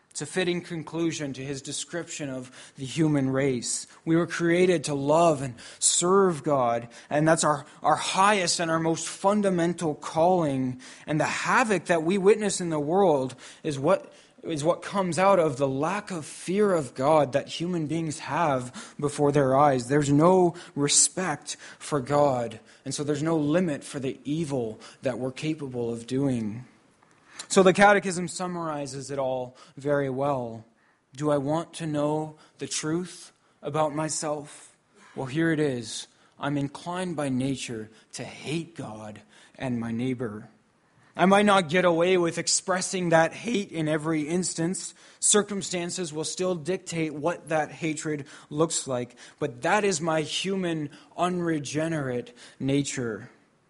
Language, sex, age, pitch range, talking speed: English, male, 20-39, 140-175 Hz, 150 wpm